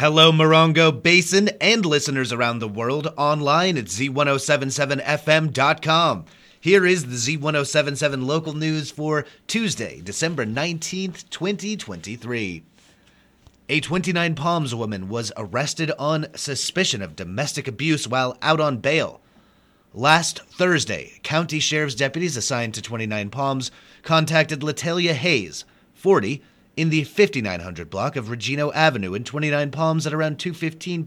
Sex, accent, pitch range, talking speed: male, American, 120-160 Hz, 120 wpm